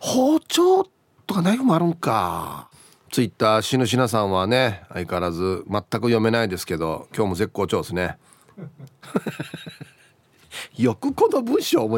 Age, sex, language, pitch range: 40-59, male, Japanese, 130-195 Hz